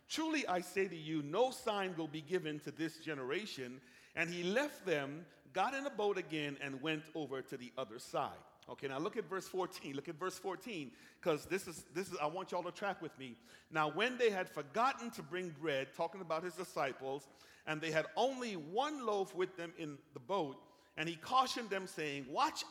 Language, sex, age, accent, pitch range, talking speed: English, male, 50-69, American, 155-200 Hz, 215 wpm